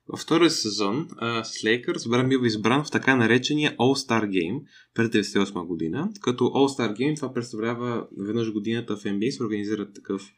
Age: 20-39